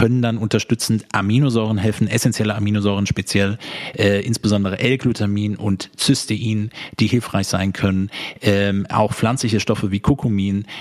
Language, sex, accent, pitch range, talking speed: German, male, German, 105-125 Hz, 130 wpm